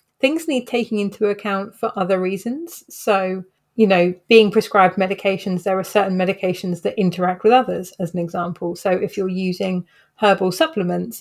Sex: female